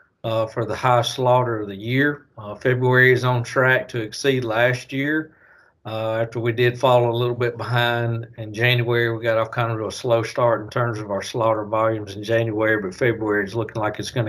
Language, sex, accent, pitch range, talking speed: English, male, American, 115-130 Hz, 215 wpm